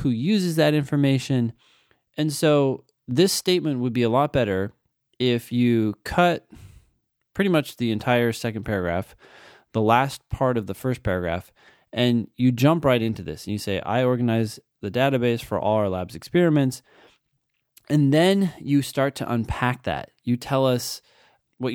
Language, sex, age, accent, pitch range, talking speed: English, male, 20-39, American, 110-140 Hz, 160 wpm